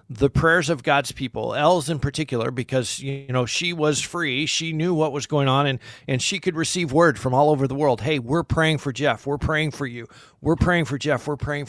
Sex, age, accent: male, 50-69, American